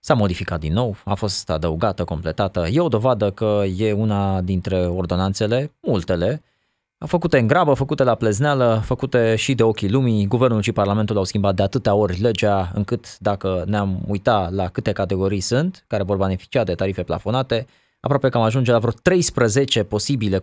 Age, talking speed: 20-39, 175 wpm